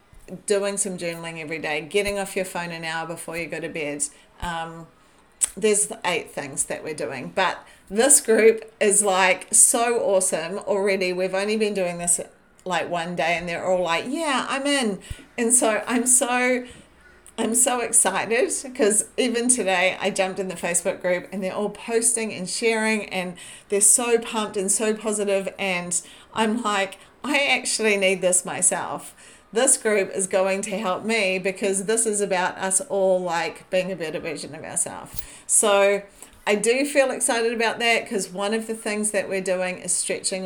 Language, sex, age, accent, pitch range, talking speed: English, female, 40-59, Australian, 185-220 Hz, 180 wpm